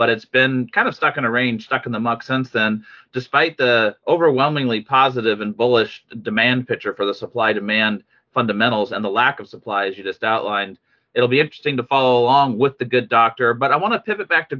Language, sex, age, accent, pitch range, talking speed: English, male, 30-49, American, 120-150 Hz, 220 wpm